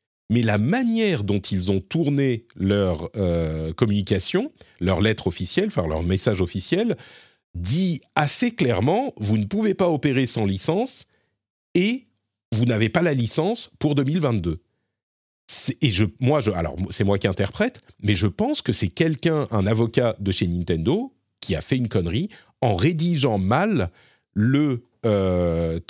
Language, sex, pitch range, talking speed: French, male, 90-120 Hz, 155 wpm